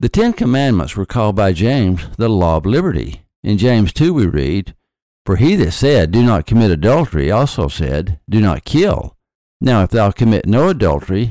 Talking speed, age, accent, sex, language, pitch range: 185 wpm, 60-79, American, male, English, 85-115 Hz